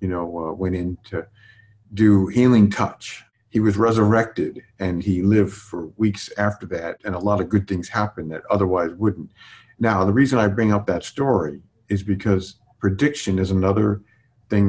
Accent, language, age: American, English, 50-69